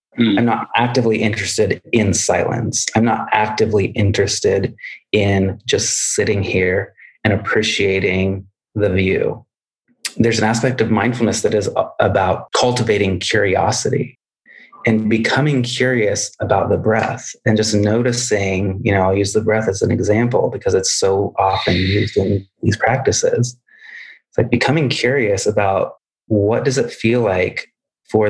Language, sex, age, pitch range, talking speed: English, male, 30-49, 100-120 Hz, 140 wpm